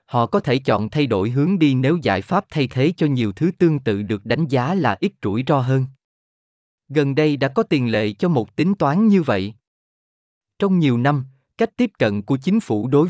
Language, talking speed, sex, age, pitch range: Vietnamese, 220 wpm, male, 20-39, 115-165 Hz